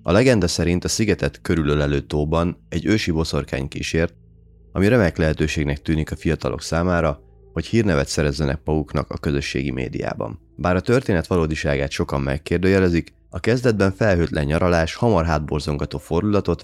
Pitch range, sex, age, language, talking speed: 75-95 Hz, male, 30-49, Hungarian, 135 wpm